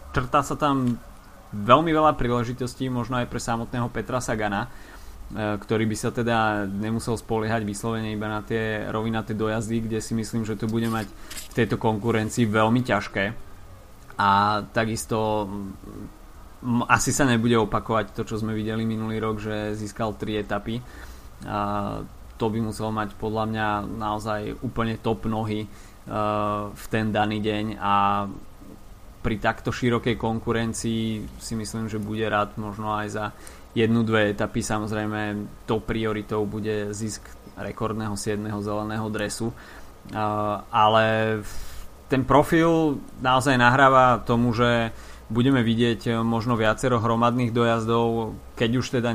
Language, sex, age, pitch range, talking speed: Slovak, male, 20-39, 105-115 Hz, 130 wpm